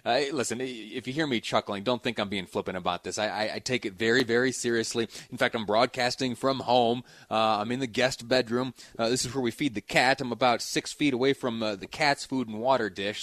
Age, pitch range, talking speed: 30-49, 105-125 Hz, 250 wpm